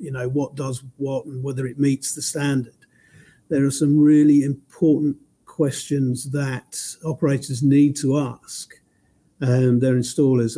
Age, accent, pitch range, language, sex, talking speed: 50-69, British, 130-150 Hz, English, male, 140 wpm